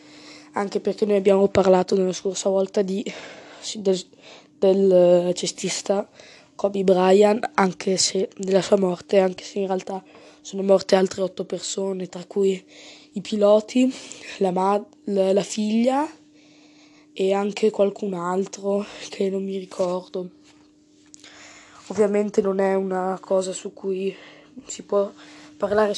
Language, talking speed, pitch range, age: Italian, 120 wpm, 190-230 Hz, 20-39